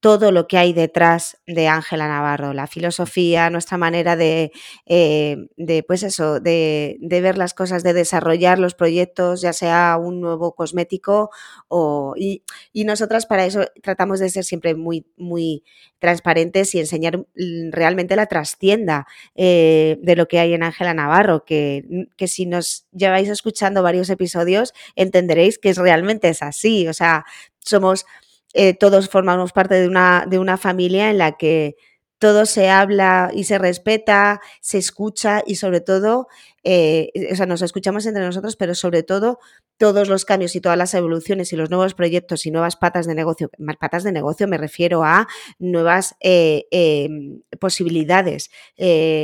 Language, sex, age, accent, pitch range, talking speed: Spanish, female, 20-39, Spanish, 165-190 Hz, 160 wpm